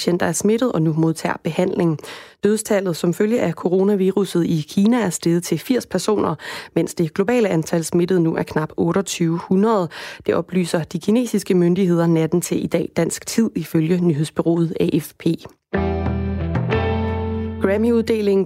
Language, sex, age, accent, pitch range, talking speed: Danish, female, 20-39, native, 170-205 Hz, 140 wpm